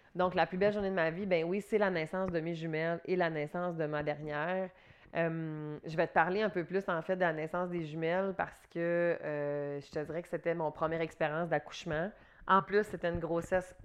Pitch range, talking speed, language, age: 155-180 Hz, 235 wpm, French, 30-49